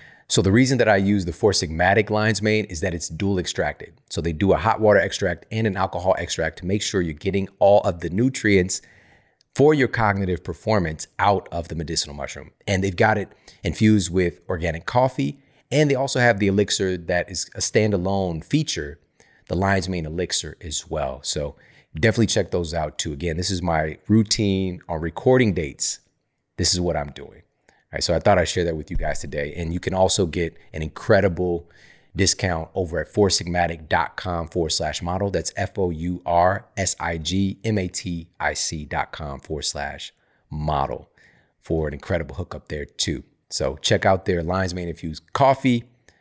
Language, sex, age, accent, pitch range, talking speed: English, male, 30-49, American, 85-105 Hz, 170 wpm